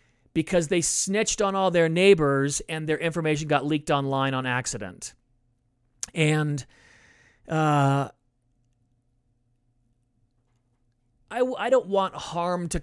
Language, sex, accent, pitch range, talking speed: English, male, American, 135-175 Hz, 110 wpm